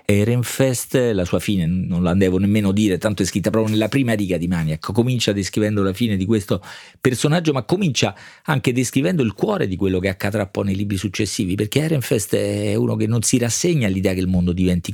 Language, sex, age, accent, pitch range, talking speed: Italian, male, 40-59, native, 90-110 Hz, 210 wpm